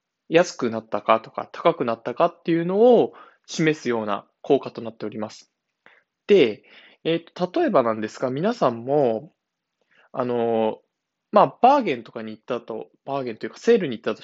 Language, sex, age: Japanese, male, 20-39